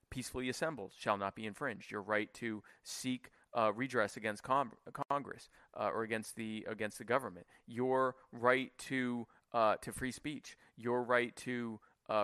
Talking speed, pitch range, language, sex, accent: 160 wpm, 110-135 Hz, English, male, American